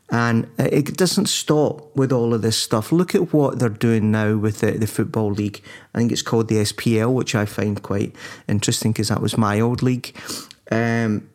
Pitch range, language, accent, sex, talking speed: 110-130 Hz, English, British, male, 200 wpm